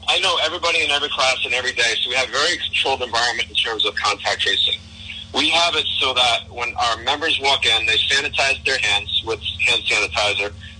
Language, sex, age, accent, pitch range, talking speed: English, male, 50-69, American, 105-140 Hz, 210 wpm